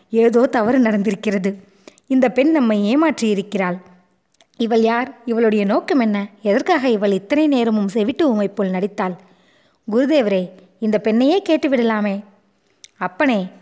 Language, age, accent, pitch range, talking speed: Tamil, 20-39, native, 195-250 Hz, 105 wpm